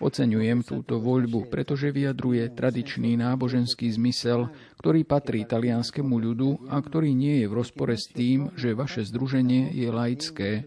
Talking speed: 140 wpm